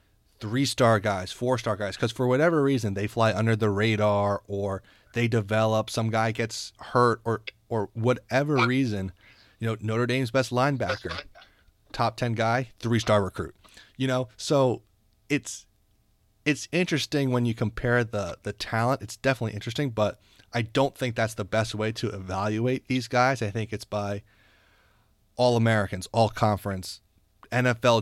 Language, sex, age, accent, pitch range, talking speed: English, male, 30-49, American, 105-125 Hz, 155 wpm